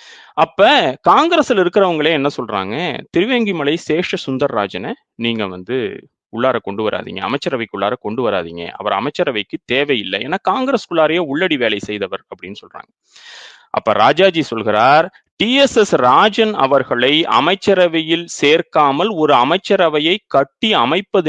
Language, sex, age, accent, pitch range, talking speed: Tamil, male, 30-49, native, 135-225 Hz, 115 wpm